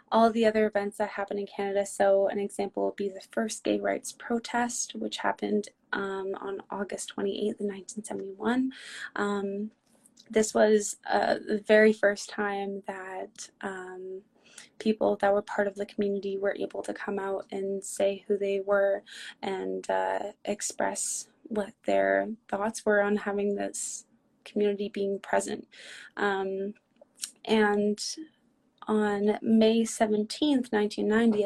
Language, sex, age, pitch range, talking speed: English, female, 20-39, 195-220 Hz, 135 wpm